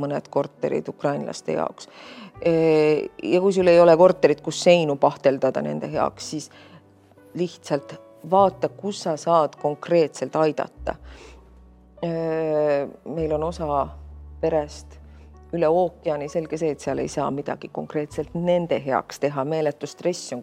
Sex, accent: female, Finnish